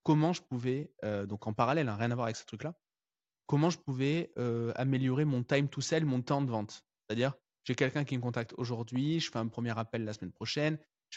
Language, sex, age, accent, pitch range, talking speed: French, male, 20-39, French, 115-145 Hz, 230 wpm